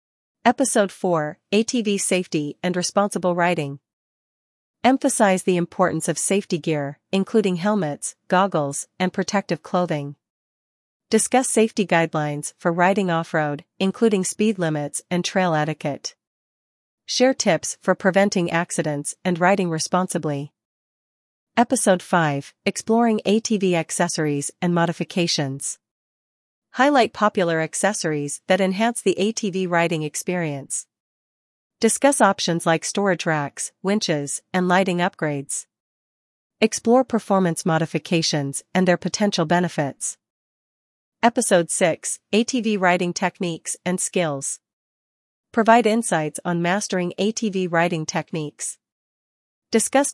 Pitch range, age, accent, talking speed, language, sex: 160-205 Hz, 40-59, American, 105 wpm, English, female